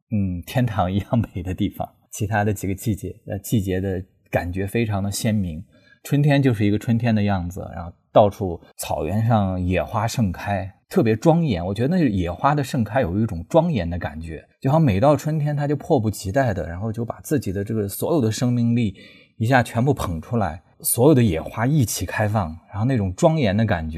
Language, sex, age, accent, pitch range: English, male, 20-39, Chinese, 95-120 Hz